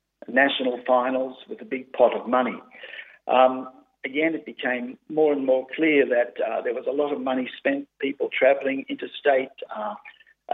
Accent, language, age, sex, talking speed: Australian, English, 50-69, male, 165 wpm